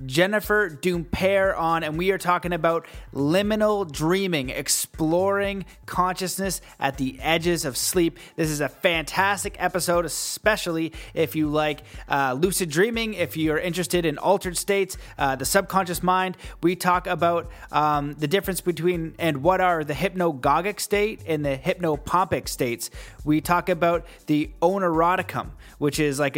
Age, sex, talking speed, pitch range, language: 30-49, male, 145 wpm, 155-190 Hz, English